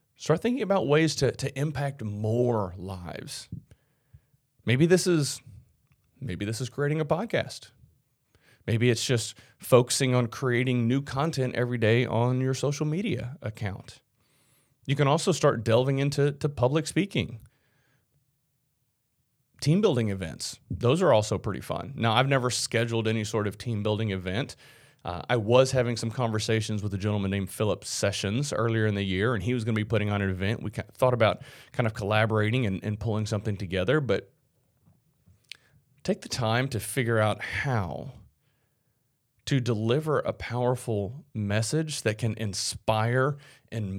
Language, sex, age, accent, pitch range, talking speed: English, male, 30-49, American, 110-135 Hz, 155 wpm